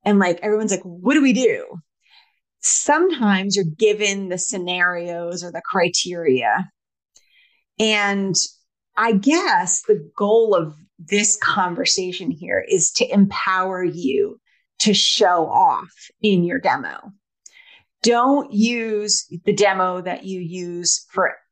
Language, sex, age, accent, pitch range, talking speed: English, female, 30-49, American, 185-240 Hz, 120 wpm